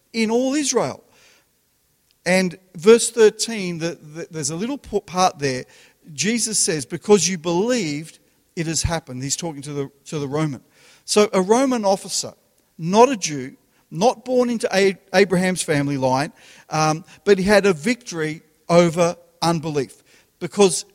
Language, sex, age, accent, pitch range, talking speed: English, male, 50-69, Australian, 155-210 Hz, 135 wpm